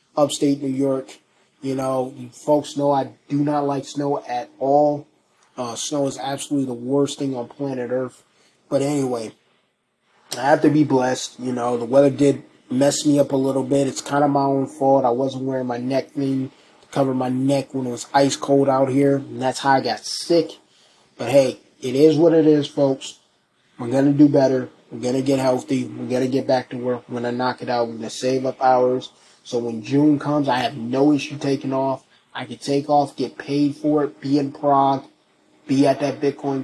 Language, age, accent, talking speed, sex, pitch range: English, 20-39, American, 210 wpm, male, 130-145 Hz